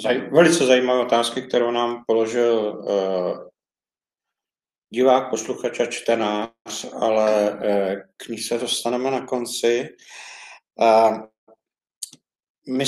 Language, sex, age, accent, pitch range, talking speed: Czech, male, 50-69, native, 120-135 Hz, 85 wpm